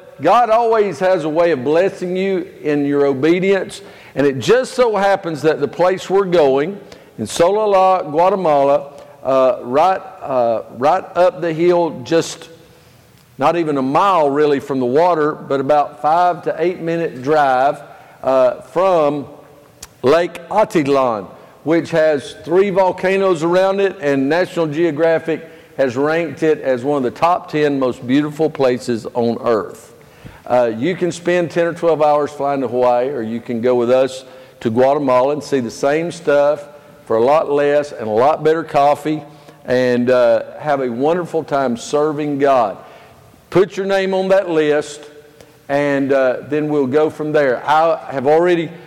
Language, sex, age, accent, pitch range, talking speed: English, male, 50-69, American, 140-170 Hz, 160 wpm